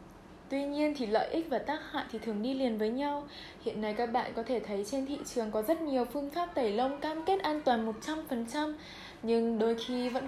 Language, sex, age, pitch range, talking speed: Vietnamese, female, 10-29, 220-280 Hz, 235 wpm